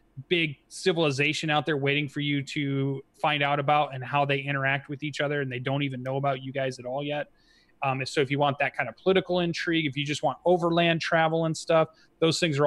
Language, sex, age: English, male, 30-49